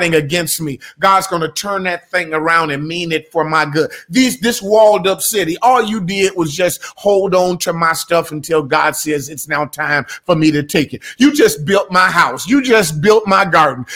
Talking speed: 215 wpm